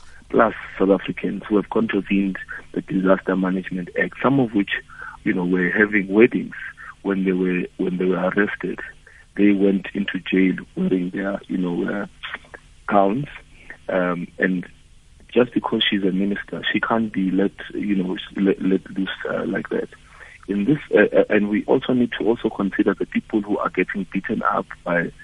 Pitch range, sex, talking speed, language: 90-100 Hz, male, 170 wpm, English